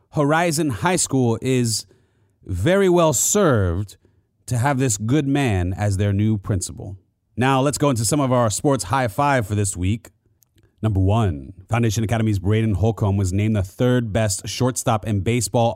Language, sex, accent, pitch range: English, male, American, 105-135 Hz